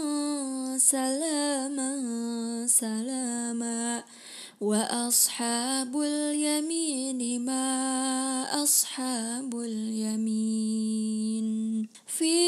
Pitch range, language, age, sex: 235-300 Hz, Indonesian, 20-39, female